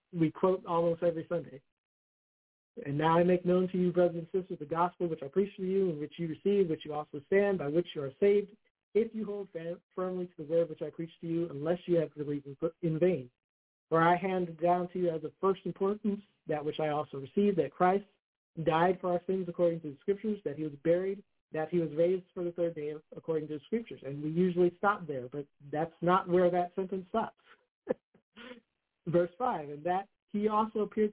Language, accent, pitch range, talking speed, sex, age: English, American, 160-195 Hz, 225 wpm, male, 50-69